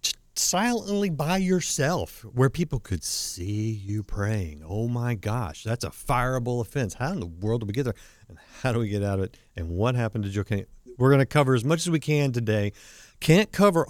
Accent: American